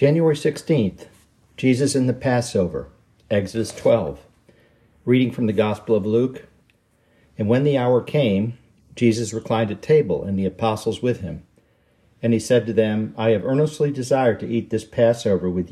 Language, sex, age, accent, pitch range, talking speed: English, male, 50-69, American, 95-120 Hz, 160 wpm